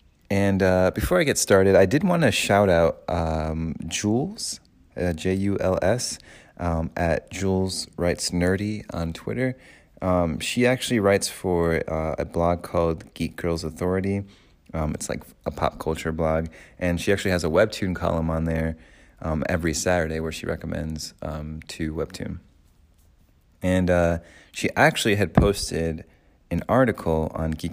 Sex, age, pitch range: male, 30-49, 80-95 Hz